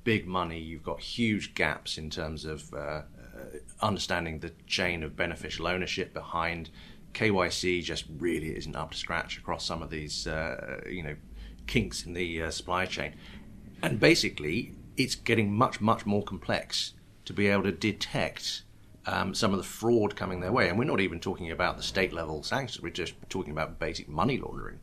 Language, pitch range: English, 85-105 Hz